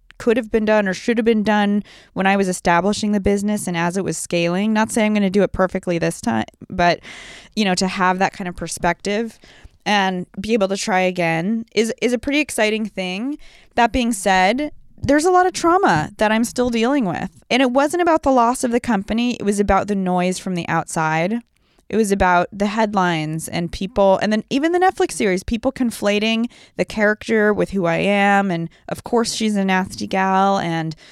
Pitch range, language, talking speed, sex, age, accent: 180-220 Hz, English, 210 wpm, female, 20-39, American